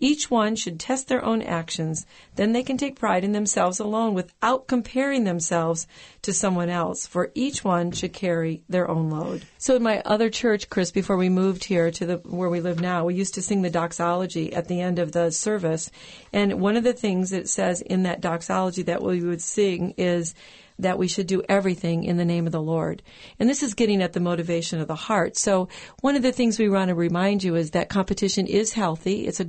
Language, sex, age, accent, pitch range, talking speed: English, female, 40-59, American, 170-220 Hz, 220 wpm